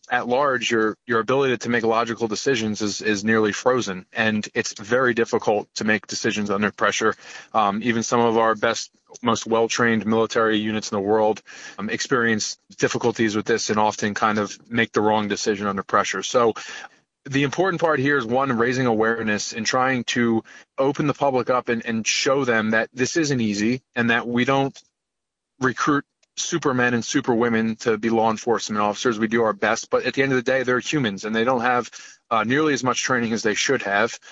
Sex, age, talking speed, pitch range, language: male, 20-39, 200 wpm, 110-125 Hz, English